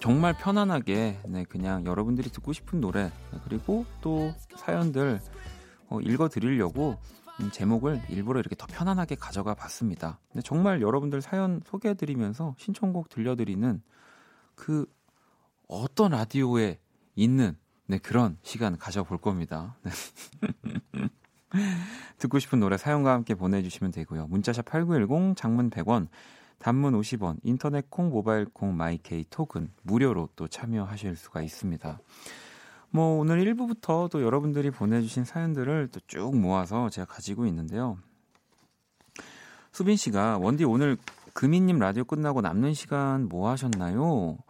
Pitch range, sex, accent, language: 95-150 Hz, male, native, Korean